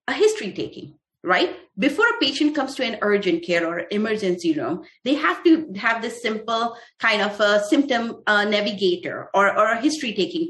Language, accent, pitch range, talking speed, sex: English, Indian, 200-280 Hz, 185 wpm, female